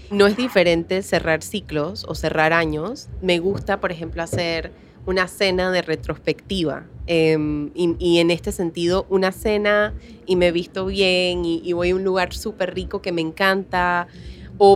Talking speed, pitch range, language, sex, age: 165 wpm, 170-200 Hz, Spanish, female, 20-39